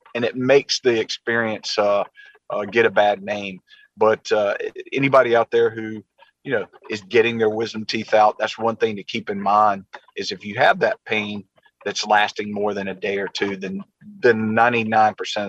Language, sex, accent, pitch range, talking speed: English, male, American, 110-140 Hz, 180 wpm